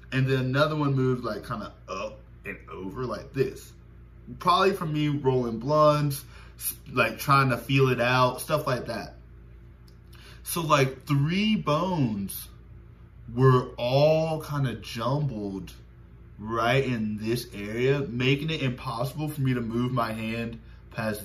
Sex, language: male, English